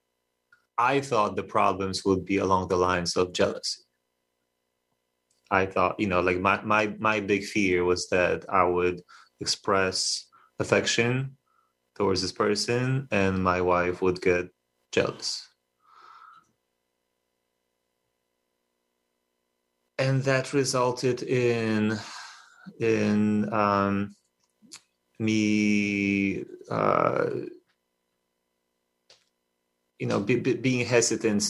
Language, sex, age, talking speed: English, male, 30-49, 95 wpm